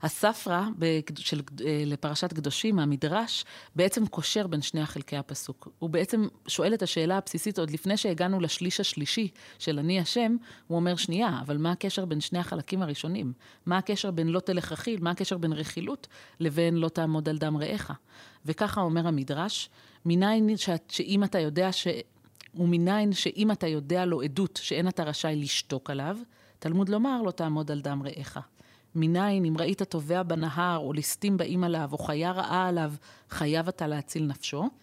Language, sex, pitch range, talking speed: Hebrew, female, 155-190 Hz, 155 wpm